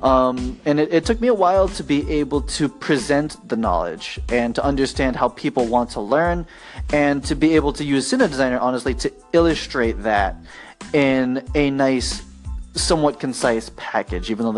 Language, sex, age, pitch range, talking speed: English, male, 20-39, 125-155 Hz, 175 wpm